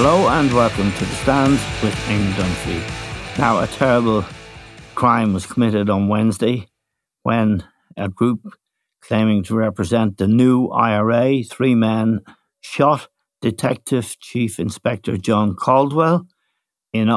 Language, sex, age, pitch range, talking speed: English, male, 60-79, 100-120 Hz, 120 wpm